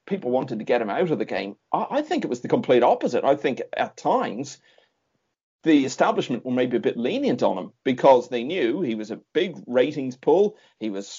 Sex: male